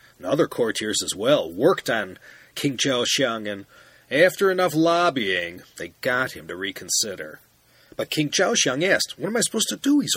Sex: male